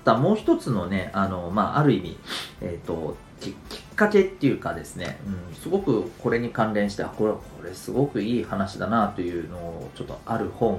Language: Japanese